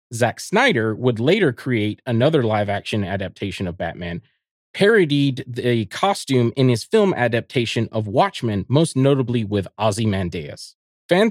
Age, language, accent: 30-49, English, American